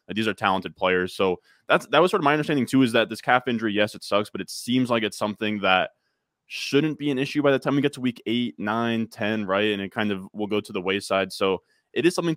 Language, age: English, 20-39